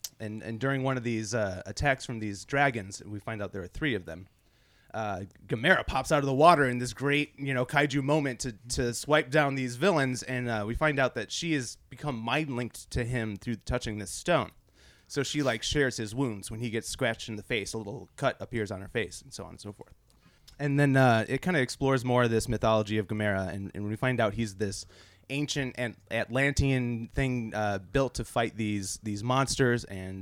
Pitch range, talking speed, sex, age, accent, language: 105-135 Hz, 225 wpm, male, 30-49, American, English